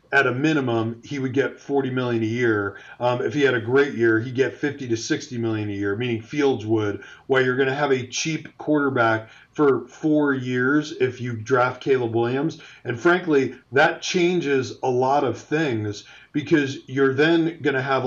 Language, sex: English, male